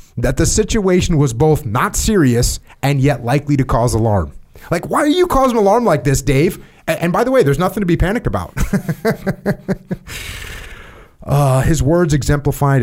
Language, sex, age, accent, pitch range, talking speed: English, male, 30-49, American, 105-145 Hz, 170 wpm